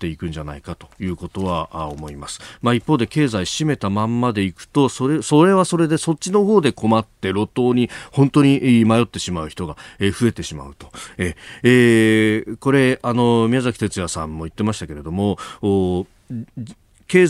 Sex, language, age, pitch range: male, Japanese, 40-59, 95-130 Hz